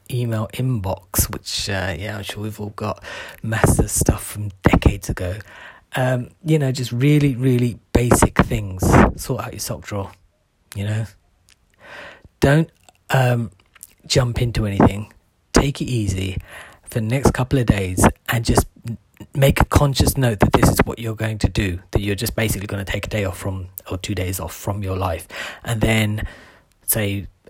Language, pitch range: English, 100-120 Hz